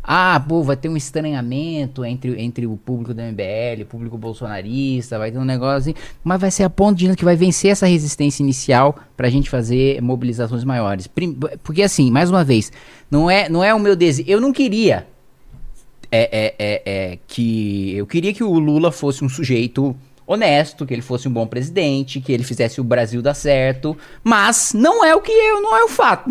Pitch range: 125-185 Hz